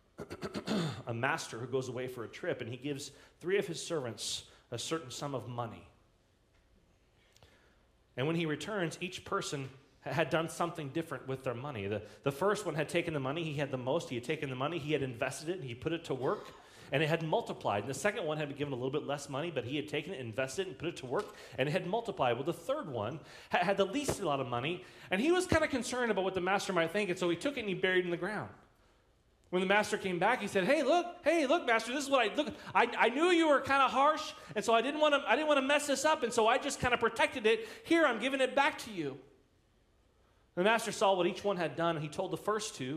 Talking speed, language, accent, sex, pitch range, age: 265 wpm, English, American, male, 130-200 Hz, 30-49